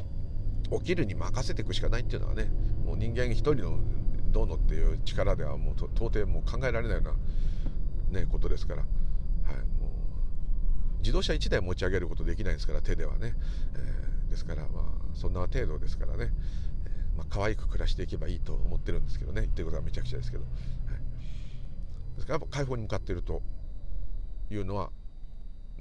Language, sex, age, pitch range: Japanese, male, 50-69, 80-110 Hz